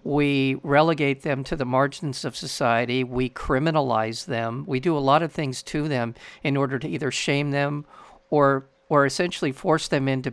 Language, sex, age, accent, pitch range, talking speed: English, male, 50-69, American, 130-150 Hz, 180 wpm